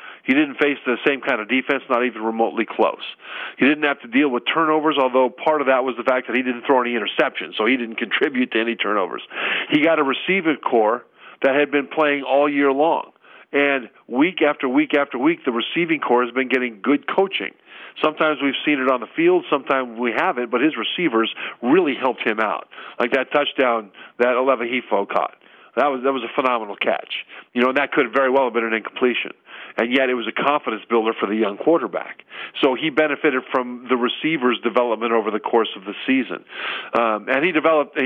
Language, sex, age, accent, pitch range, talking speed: English, male, 40-59, American, 125-150 Hz, 210 wpm